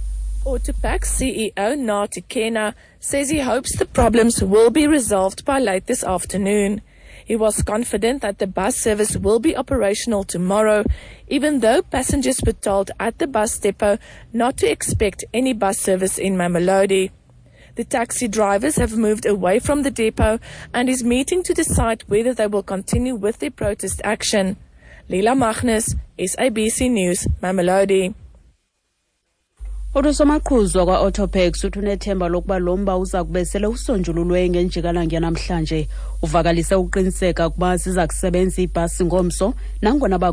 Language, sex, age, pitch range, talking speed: English, female, 20-39, 175-220 Hz, 145 wpm